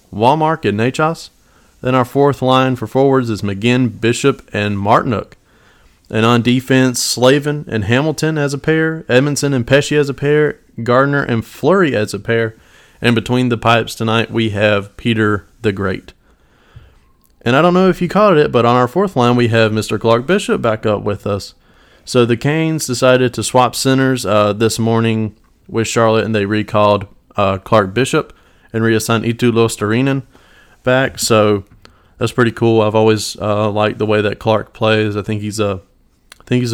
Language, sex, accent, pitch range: English, male, American, 105-125 Hz